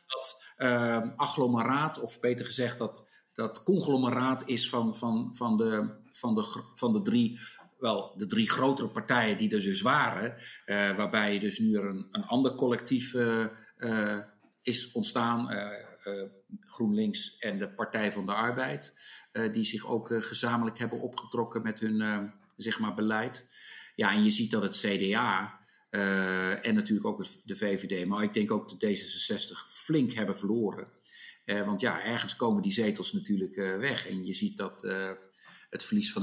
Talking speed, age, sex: 170 wpm, 50-69, male